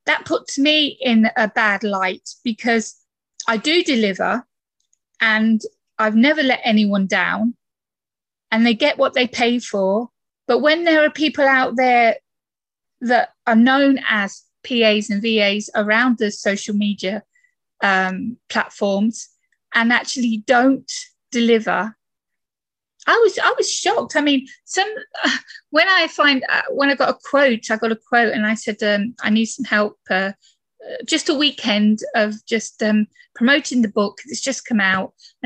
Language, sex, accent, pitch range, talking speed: English, female, British, 220-315 Hz, 160 wpm